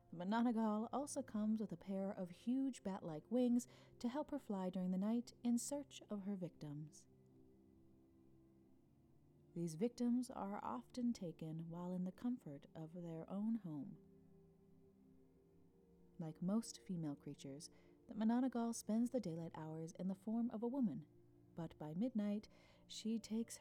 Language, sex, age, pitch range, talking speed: English, female, 30-49, 150-220 Hz, 140 wpm